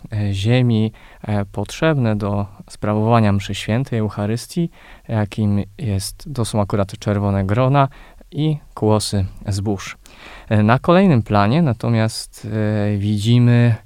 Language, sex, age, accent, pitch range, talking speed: Polish, male, 20-39, native, 100-120 Hz, 95 wpm